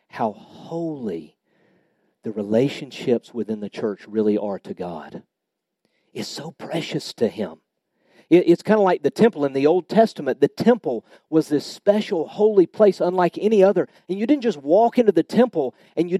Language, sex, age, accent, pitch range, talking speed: English, male, 50-69, American, 145-210 Hz, 170 wpm